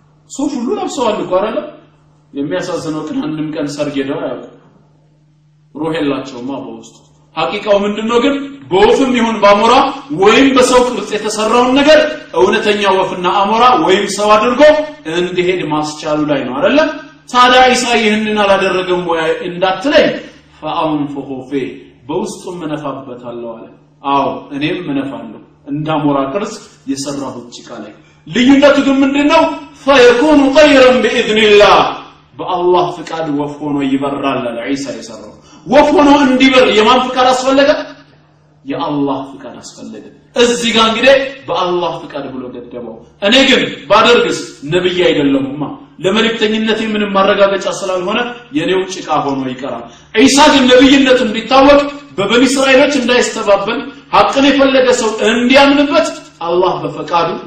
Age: 30-49